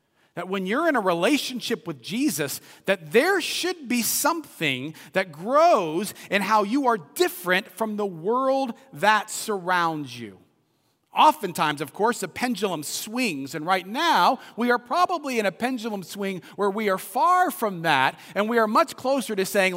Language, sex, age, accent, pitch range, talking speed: English, male, 40-59, American, 180-255 Hz, 165 wpm